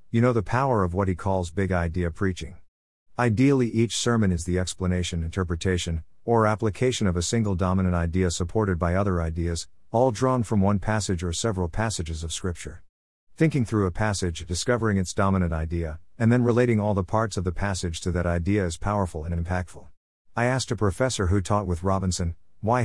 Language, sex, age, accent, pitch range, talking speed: English, male, 50-69, American, 90-115 Hz, 190 wpm